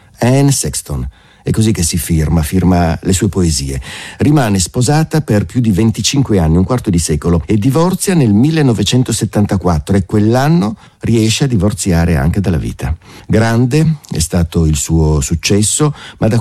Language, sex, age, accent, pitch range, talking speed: Italian, male, 50-69, native, 85-120 Hz, 155 wpm